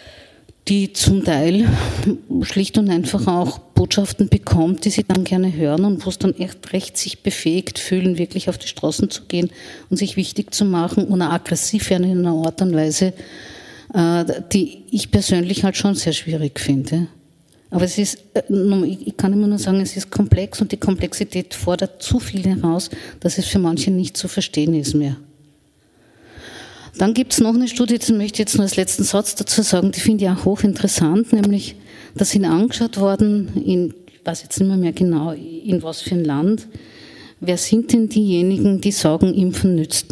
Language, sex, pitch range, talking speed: German, female, 165-200 Hz, 185 wpm